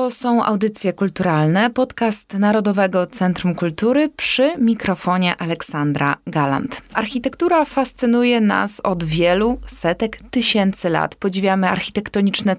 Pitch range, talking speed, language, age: 185-225 Hz, 100 wpm, Polish, 20-39